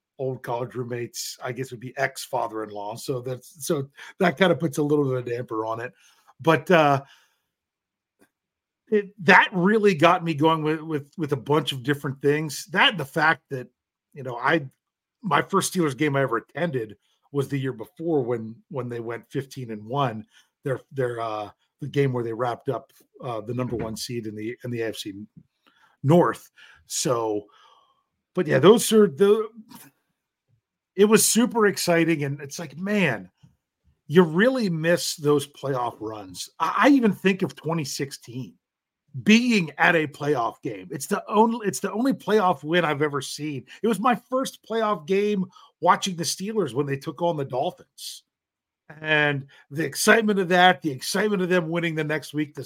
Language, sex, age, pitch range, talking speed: English, male, 50-69, 130-180 Hz, 175 wpm